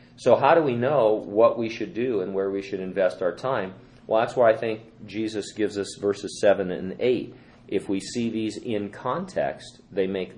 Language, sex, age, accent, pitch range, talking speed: English, male, 40-59, American, 90-120 Hz, 210 wpm